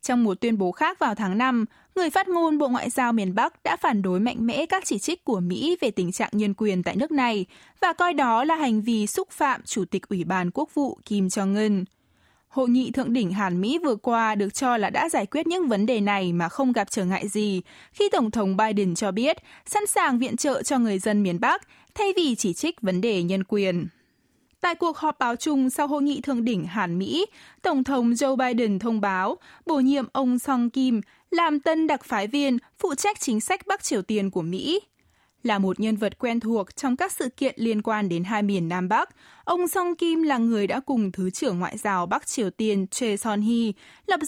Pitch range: 200-290 Hz